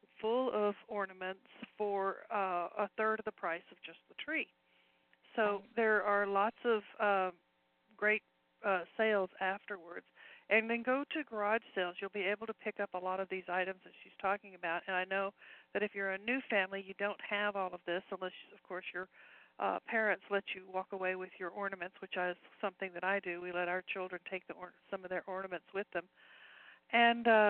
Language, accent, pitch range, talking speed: English, American, 185-210 Hz, 200 wpm